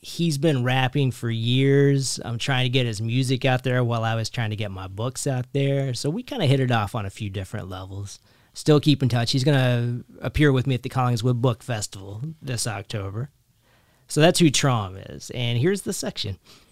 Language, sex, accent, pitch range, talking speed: English, male, American, 115-145 Hz, 220 wpm